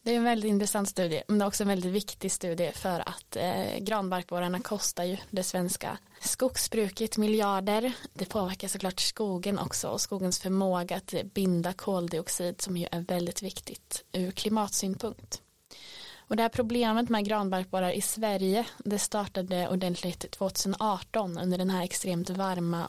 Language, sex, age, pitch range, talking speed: Swedish, female, 20-39, 175-205 Hz, 155 wpm